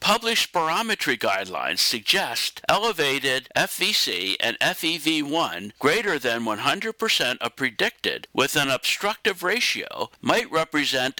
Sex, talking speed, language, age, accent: male, 100 wpm, English, 60-79, American